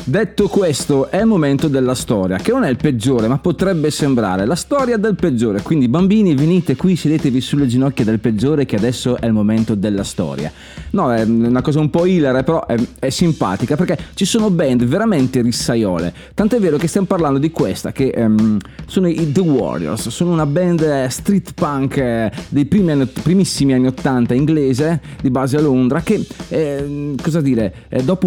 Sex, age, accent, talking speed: male, 30-49, native, 185 wpm